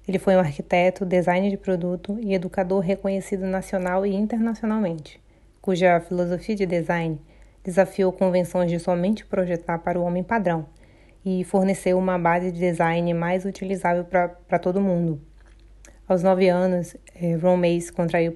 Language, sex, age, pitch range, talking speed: Portuguese, female, 20-39, 170-190 Hz, 140 wpm